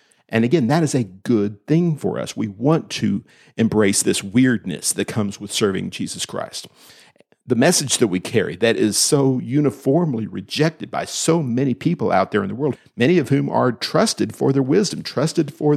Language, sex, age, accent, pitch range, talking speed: English, male, 50-69, American, 105-145 Hz, 190 wpm